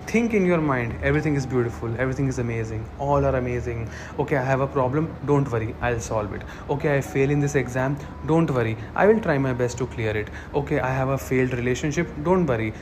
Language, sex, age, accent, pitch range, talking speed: English, male, 30-49, Indian, 125-160 Hz, 220 wpm